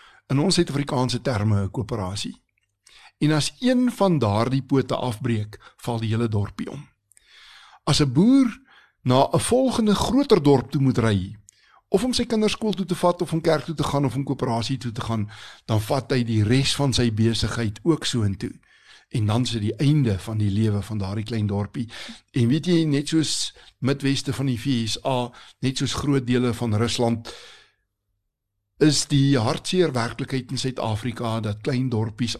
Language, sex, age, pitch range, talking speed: Swedish, male, 60-79, 110-140 Hz, 175 wpm